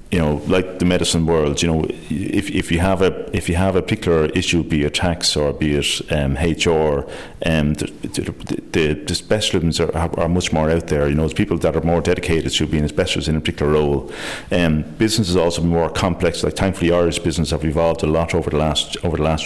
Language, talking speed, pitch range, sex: English, 235 wpm, 75-85 Hz, male